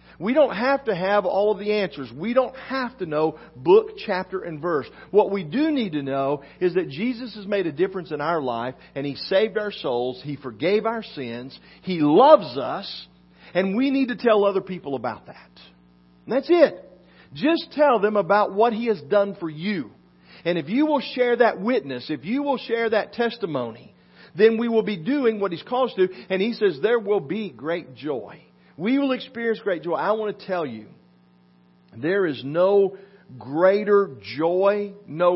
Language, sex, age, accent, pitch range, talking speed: English, male, 50-69, American, 135-215 Hz, 195 wpm